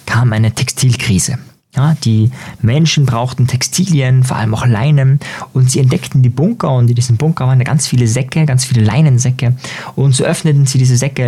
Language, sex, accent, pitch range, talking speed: German, male, German, 110-145 Hz, 180 wpm